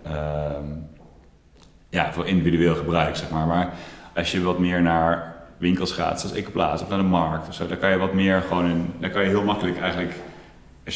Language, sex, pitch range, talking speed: English, male, 80-90 Hz, 210 wpm